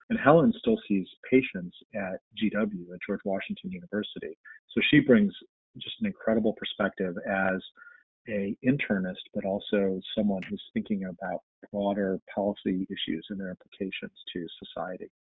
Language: English